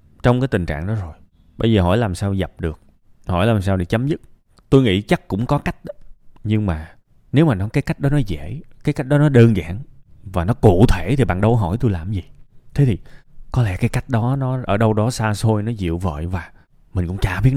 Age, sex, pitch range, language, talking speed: 20-39, male, 90-120 Hz, Vietnamese, 255 wpm